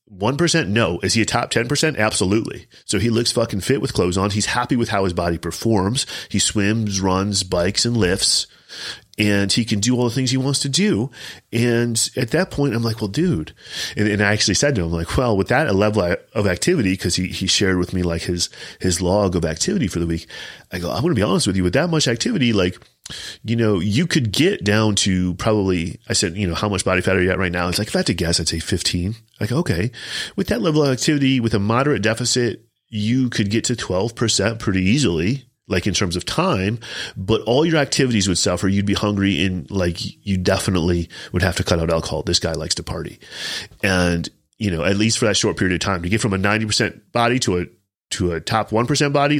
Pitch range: 90-115 Hz